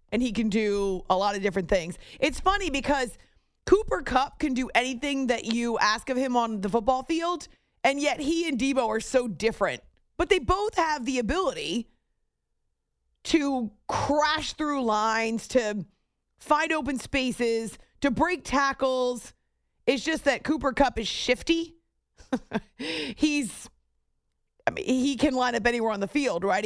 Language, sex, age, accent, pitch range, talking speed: English, female, 30-49, American, 215-280 Hz, 160 wpm